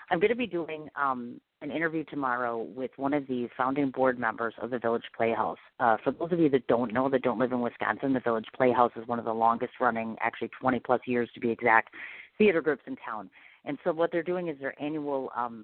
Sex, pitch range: female, 120-145 Hz